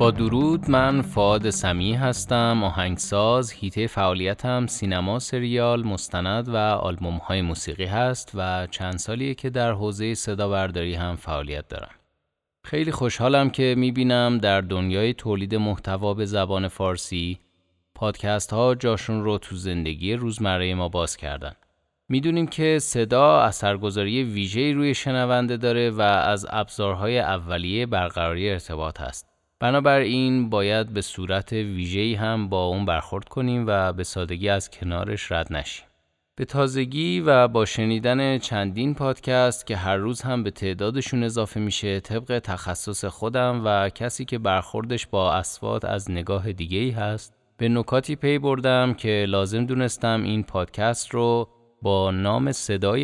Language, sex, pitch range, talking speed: Persian, male, 95-120 Hz, 140 wpm